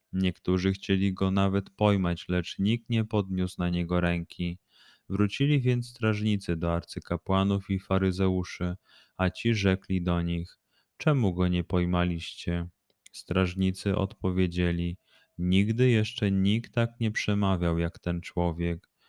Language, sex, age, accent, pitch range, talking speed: Polish, male, 20-39, native, 90-105 Hz, 125 wpm